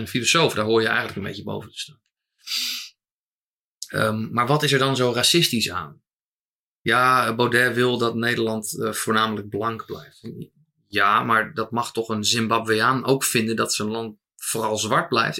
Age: 20-39